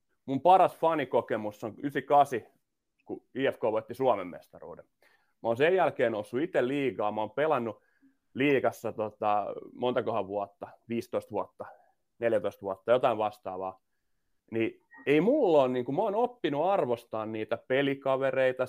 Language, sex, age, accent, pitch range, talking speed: Finnish, male, 30-49, native, 115-145 Hz, 130 wpm